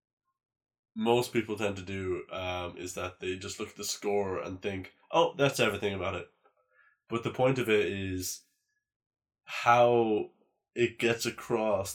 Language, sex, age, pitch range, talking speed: English, male, 20-39, 100-120 Hz, 155 wpm